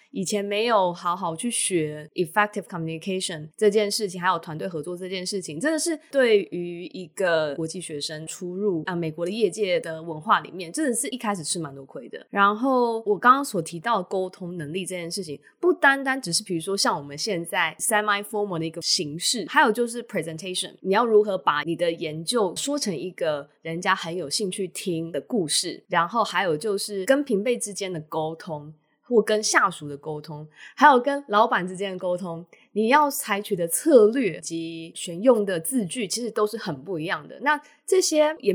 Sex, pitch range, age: female, 170-220 Hz, 20-39